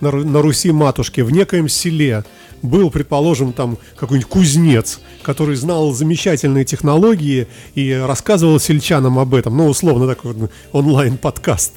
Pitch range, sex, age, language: 130-155 Hz, male, 40-59, Russian